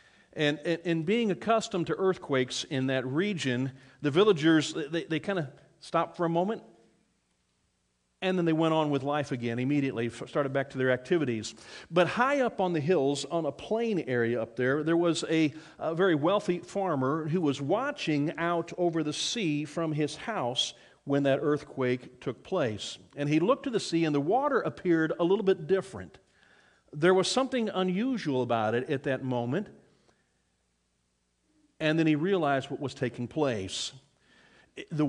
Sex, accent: male, American